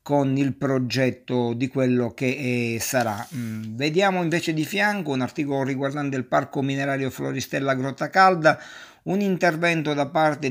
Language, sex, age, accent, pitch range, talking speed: Italian, male, 50-69, native, 130-155 Hz, 135 wpm